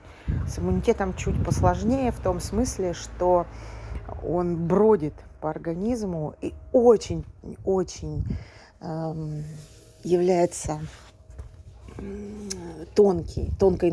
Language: Russian